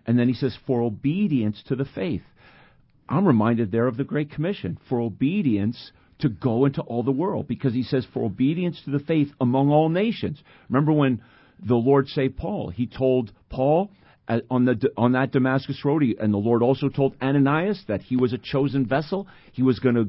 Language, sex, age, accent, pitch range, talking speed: English, male, 50-69, American, 115-160 Hz, 195 wpm